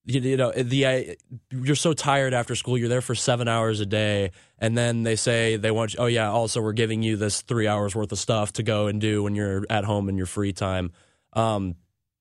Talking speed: 230 wpm